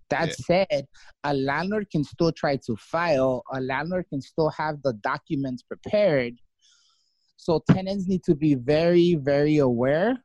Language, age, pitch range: English, 30-49, 130-175 Hz